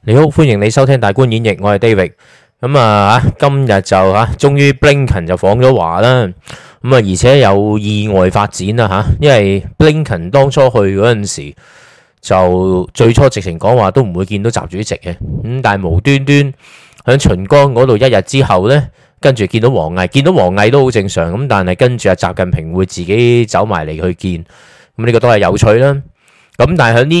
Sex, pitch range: male, 95-135 Hz